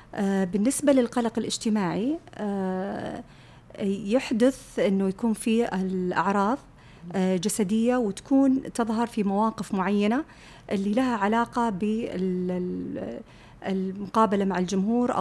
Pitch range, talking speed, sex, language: 195-235 Hz, 80 wpm, female, Arabic